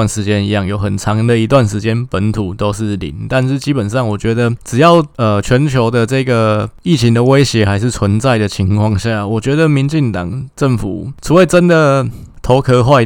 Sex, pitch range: male, 110-135 Hz